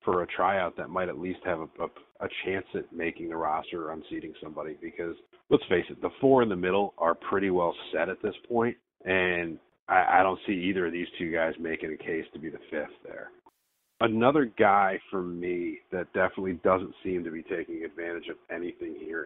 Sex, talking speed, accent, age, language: male, 210 wpm, American, 40-59, English